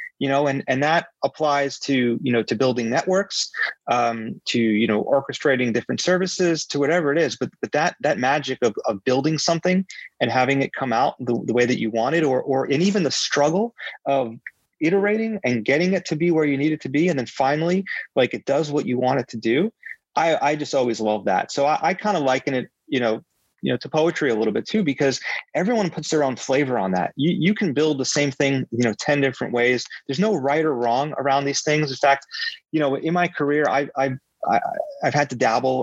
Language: English